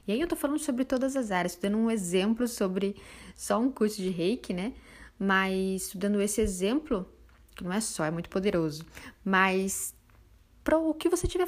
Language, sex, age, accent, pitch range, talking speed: Portuguese, female, 10-29, Brazilian, 170-225 Hz, 195 wpm